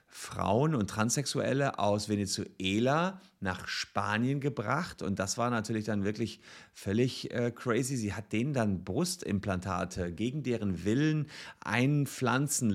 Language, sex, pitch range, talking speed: German, male, 90-120 Hz, 120 wpm